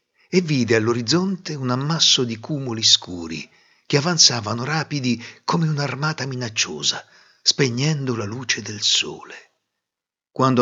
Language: Italian